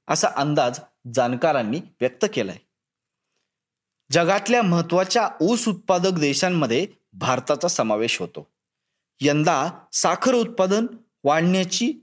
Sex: male